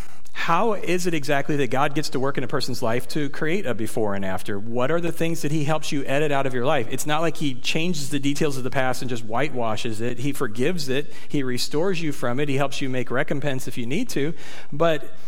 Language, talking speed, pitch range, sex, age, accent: English, 250 wpm, 125-155 Hz, male, 40-59, American